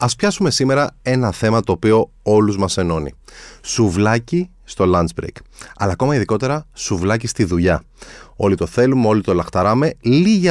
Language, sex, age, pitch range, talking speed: Greek, male, 30-49, 95-130 Hz, 155 wpm